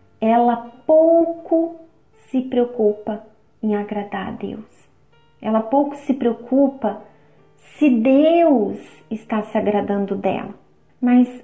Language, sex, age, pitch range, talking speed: Portuguese, female, 30-49, 210-250 Hz, 100 wpm